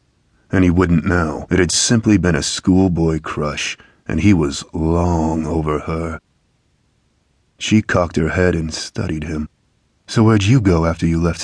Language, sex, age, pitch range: English, male, 30-49, 80-100 Hz